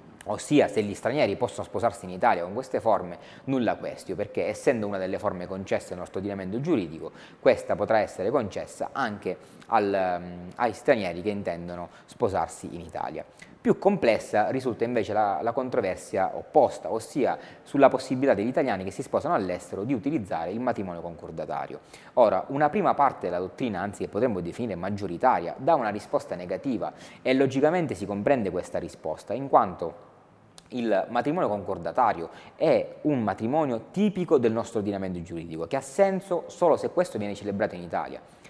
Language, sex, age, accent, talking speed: Italian, male, 30-49, native, 160 wpm